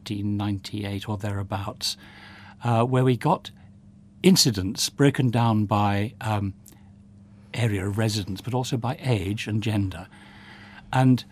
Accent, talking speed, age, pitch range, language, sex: British, 115 wpm, 60-79, 100-125 Hz, English, male